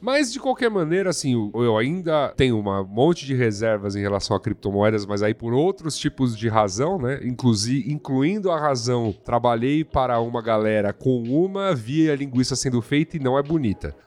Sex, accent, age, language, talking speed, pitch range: male, Brazilian, 30-49, Portuguese, 180 wpm, 105-150 Hz